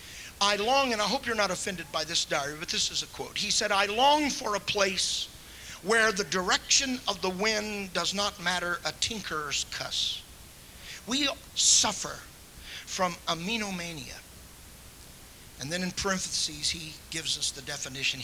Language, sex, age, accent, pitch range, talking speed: English, male, 50-69, American, 145-195 Hz, 160 wpm